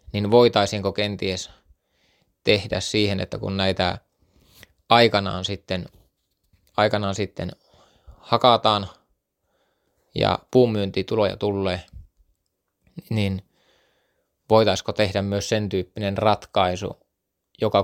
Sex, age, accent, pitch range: male, 20-39, native, 95-105 Hz